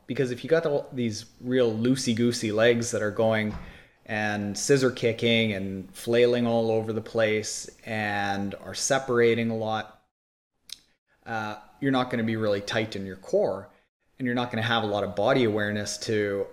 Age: 30-49